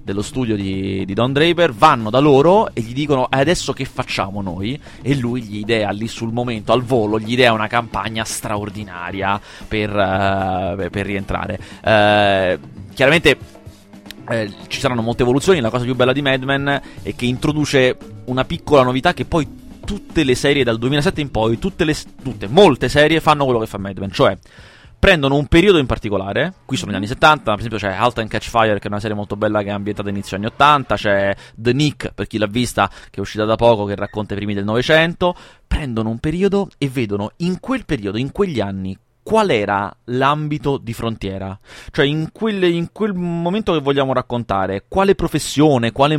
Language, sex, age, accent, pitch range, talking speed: Italian, male, 30-49, native, 105-150 Hz, 195 wpm